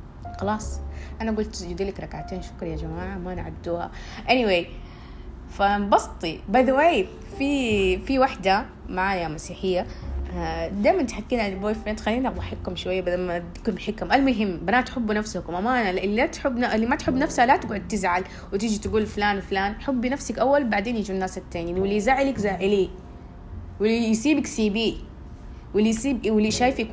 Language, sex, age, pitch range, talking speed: Arabic, female, 20-39, 185-255 Hz, 150 wpm